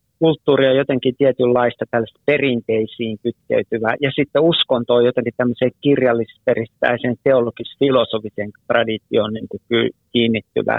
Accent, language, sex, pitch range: native, Finnish, male, 120-140 Hz